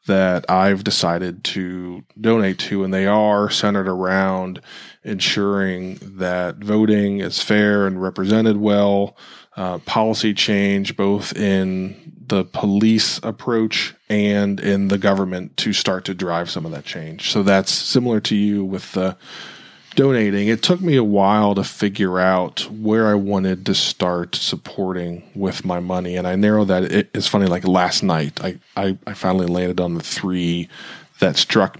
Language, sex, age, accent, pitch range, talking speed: English, male, 20-39, American, 95-105 Hz, 155 wpm